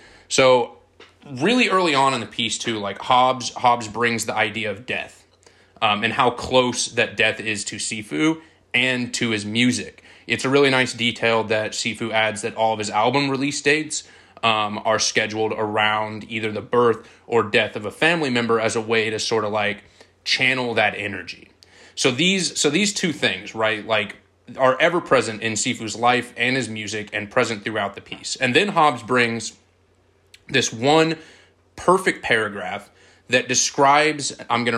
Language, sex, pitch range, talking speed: English, male, 110-135 Hz, 175 wpm